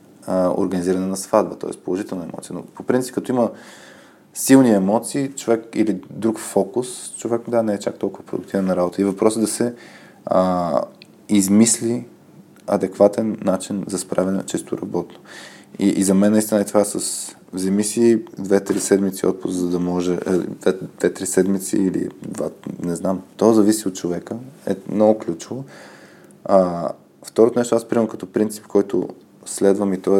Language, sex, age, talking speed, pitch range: Bulgarian, male, 20-39, 160 wpm, 95-110 Hz